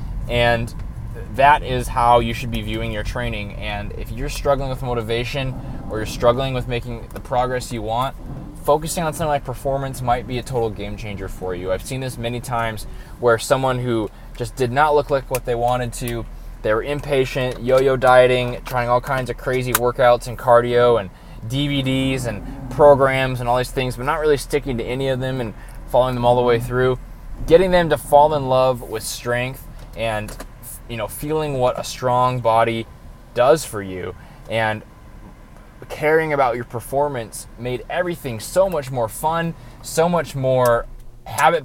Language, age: English, 20-39